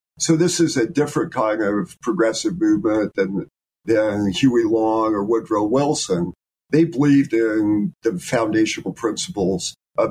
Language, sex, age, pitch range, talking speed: English, male, 50-69, 100-140 Hz, 135 wpm